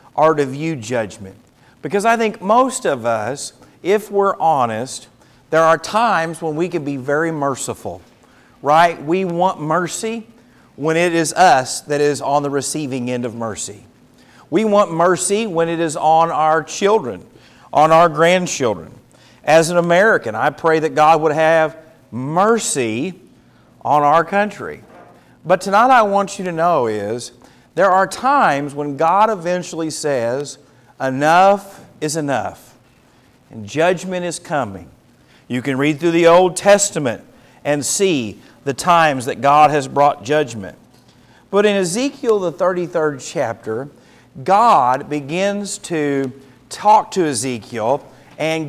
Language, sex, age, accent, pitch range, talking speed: English, male, 50-69, American, 135-185 Hz, 140 wpm